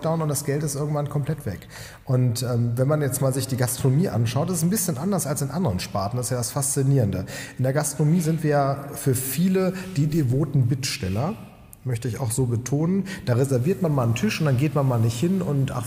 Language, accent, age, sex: German, German, 40-59, male